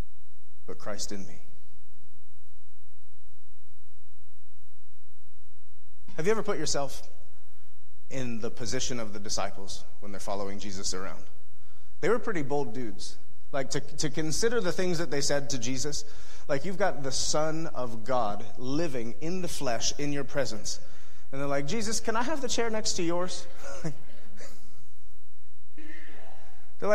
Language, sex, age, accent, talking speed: English, male, 30-49, American, 140 wpm